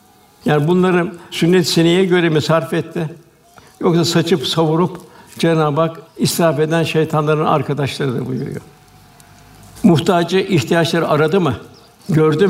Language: Turkish